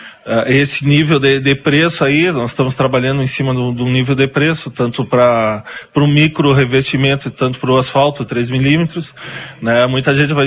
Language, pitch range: Portuguese, 130-155 Hz